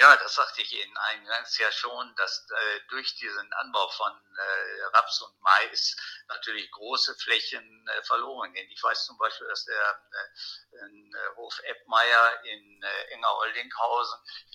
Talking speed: 160 wpm